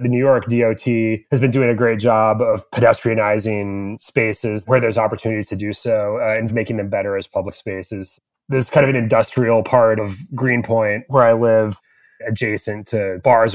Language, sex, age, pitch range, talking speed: English, male, 20-39, 100-115 Hz, 180 wpm